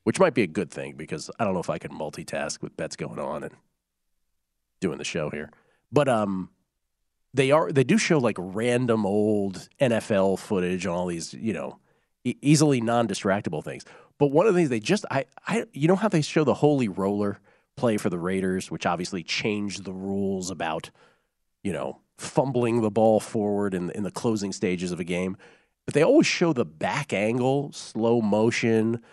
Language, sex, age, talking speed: English, male, 40-59, 190 wpm